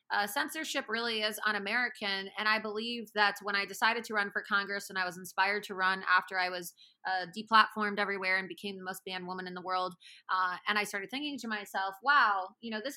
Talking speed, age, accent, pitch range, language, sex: 225 wpm, 30-49, American, 200-250 Hz, English, female